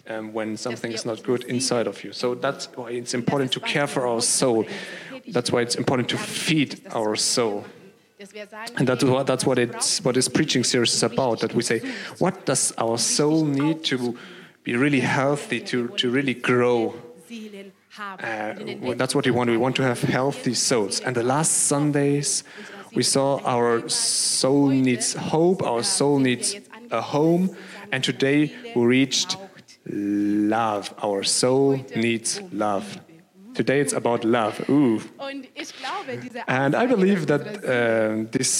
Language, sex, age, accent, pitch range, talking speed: German, male, 30-49, German, 120-165 Hz, 150 wpm